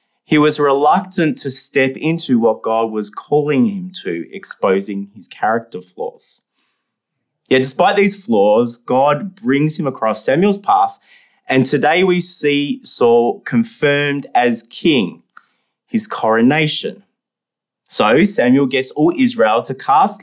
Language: English